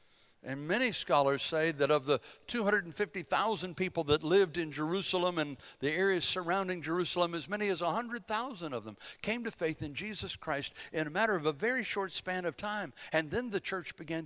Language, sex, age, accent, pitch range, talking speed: English, male, 60-79, American, 125-185 Hz, 190 wpm